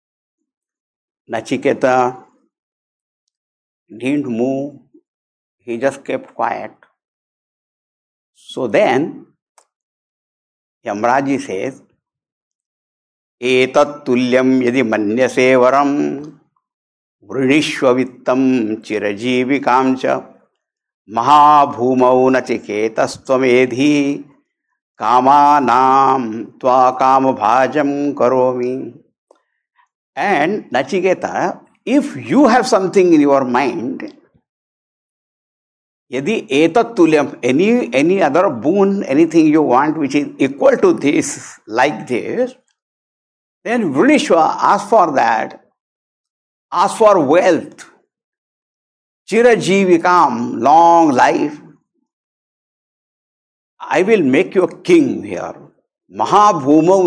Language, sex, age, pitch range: English, male, 60-79, 125-190 Hz